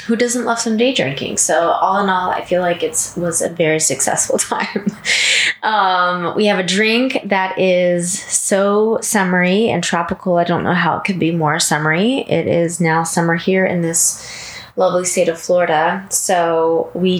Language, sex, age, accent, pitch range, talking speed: English, female, 20-39, American, 170-215 Hz, 180 wpm